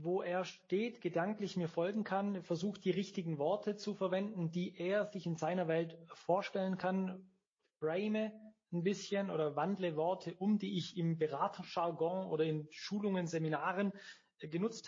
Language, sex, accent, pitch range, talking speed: German, male, German, 175-215 Hz, 150 wpm